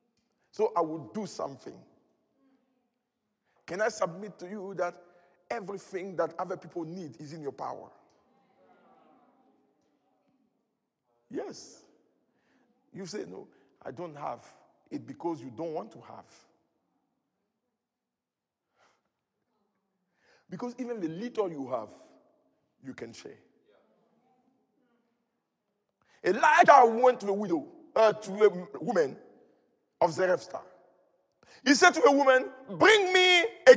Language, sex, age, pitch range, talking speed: English, male, 50-69, 180-270 Hz, 110 wpm